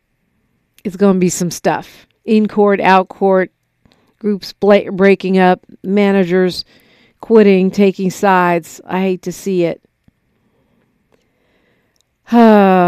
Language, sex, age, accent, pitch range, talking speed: English, female, 50-69, American, 185-215 Hz, 105 wpm